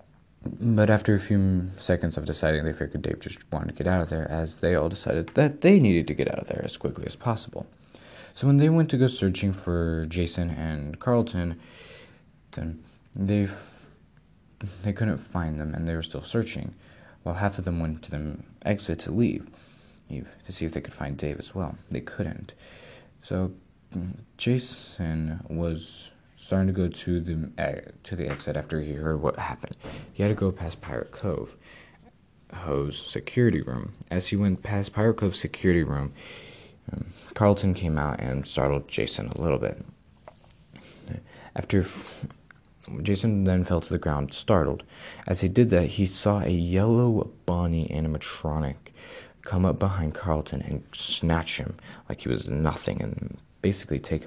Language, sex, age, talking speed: English, male, 20-39, 170 wpm